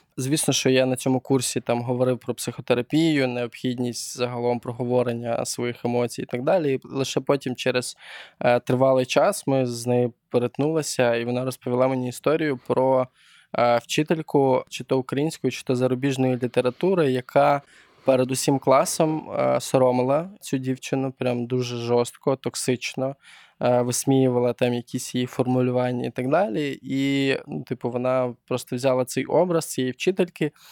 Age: 20-39